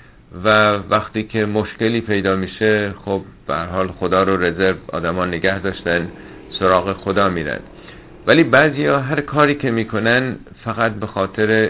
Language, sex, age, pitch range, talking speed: Persian, male, 50-69, 90-110 Hz, 145 wpm